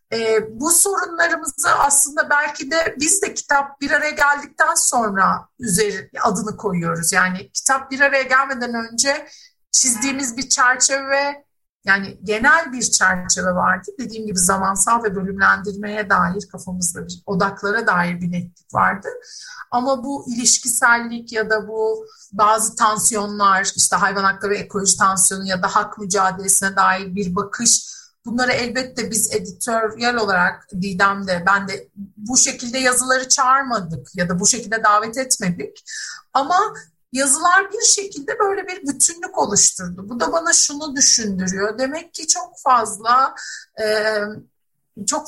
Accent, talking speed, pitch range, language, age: native, 130 wpm, 200-280 Hz, Turkish, 50-69